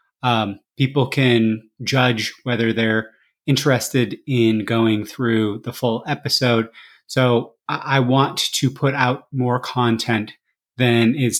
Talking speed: 125 wpm